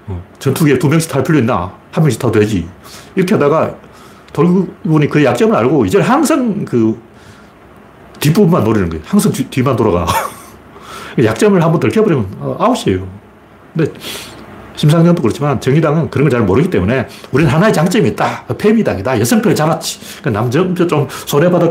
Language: Korean